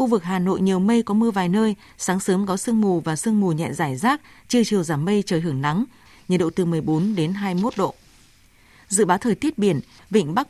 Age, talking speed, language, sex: 20-39, 245 wpm, Vietnamese, female